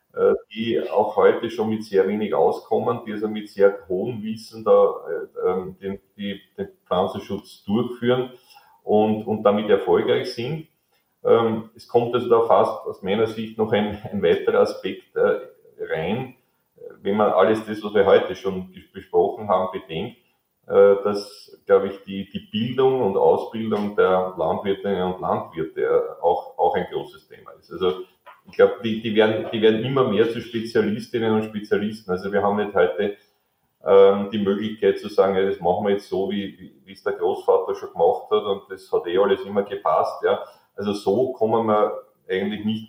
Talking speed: 175 wpm